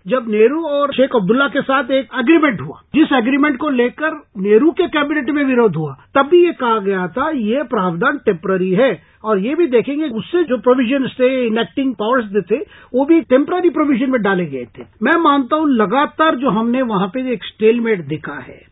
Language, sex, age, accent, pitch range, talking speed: Hindi, male, 40-59, native, 205-285 Hz, 200 wpm